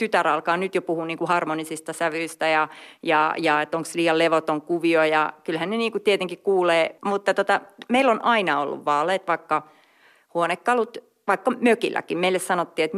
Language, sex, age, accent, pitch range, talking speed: Finnish, female, 30-49, native, 165-215 Hz, 165 wpm